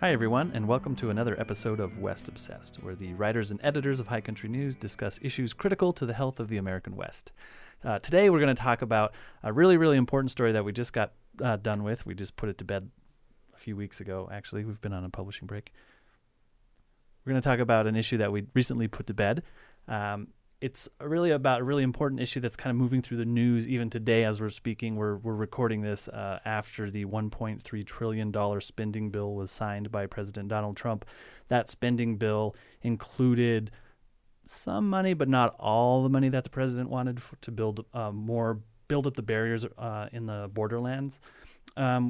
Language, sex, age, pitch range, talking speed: English, male, 30-49, 105-125 Hz, 205 wpm